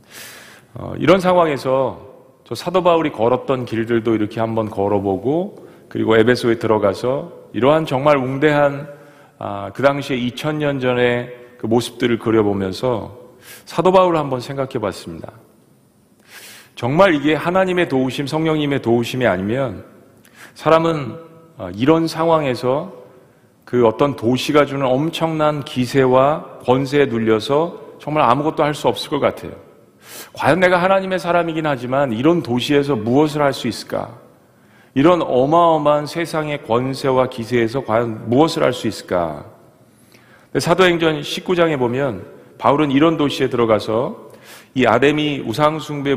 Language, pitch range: Korean, 115-150 Hz